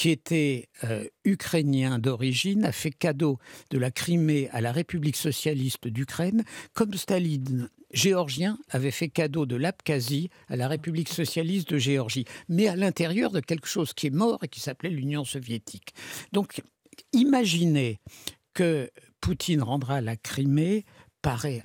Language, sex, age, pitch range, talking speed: French, male, 60-79, 125-170 Hz, 145 wpm